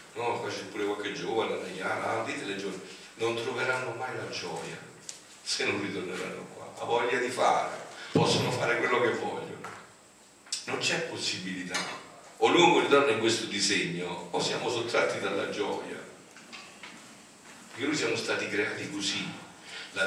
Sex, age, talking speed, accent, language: male, 50-69, 145 wpm, native, Italian